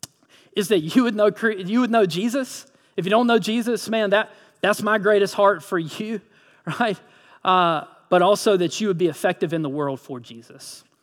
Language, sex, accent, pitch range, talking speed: English, male, American, 175-235 Hz, 195 wpm